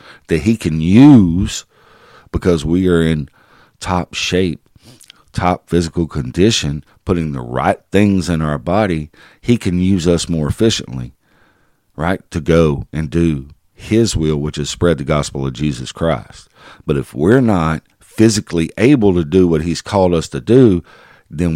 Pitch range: 75-95 Hz